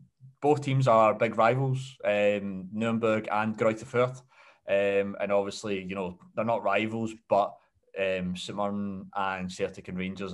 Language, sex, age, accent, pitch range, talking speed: English, male, 20-39, British, 100-125 Hz, 140 wpm